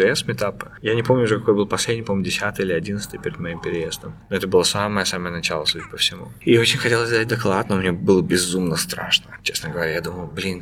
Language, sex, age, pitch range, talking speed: Russian, male, 20-39, 90-110 Hz, 210 wpm